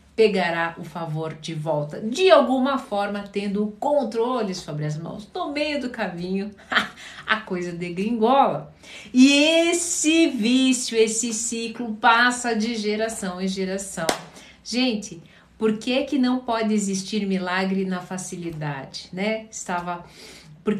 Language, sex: Portuguese, female